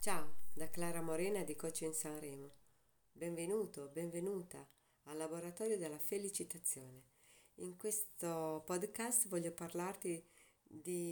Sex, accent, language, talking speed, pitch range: female, native, Italian, 110 wpm, 145-175 Hz